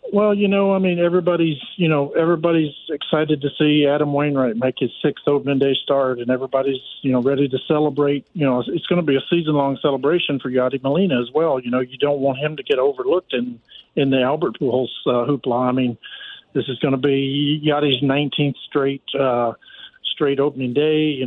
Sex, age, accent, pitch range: male, 50-69, American, 135-160 Hz